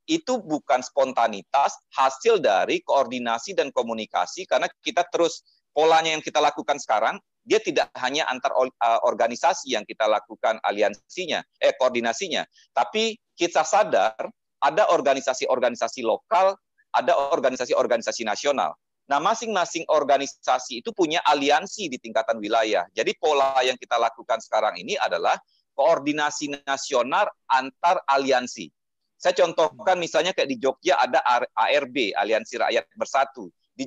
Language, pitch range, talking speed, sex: Indonesian, 130-175 Hz, 120 wpm, male